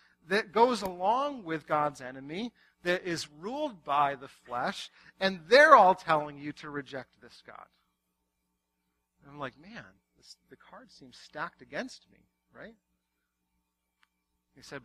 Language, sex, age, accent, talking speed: English, male, 40-59, American, 140 wpm